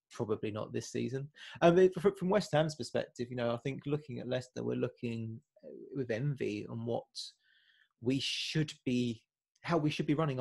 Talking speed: 180 wpm